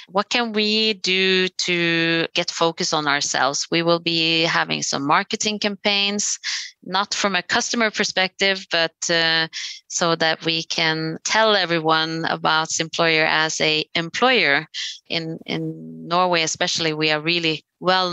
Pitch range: 165-205 Hz